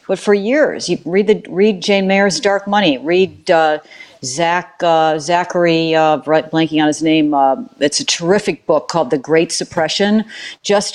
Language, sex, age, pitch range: English, female, 50-69, 160-195 Hz